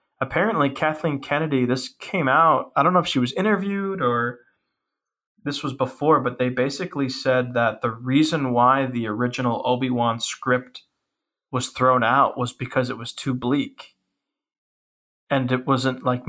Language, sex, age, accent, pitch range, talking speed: English, male, 20-39, American, 120-140 Hz, 155 wpm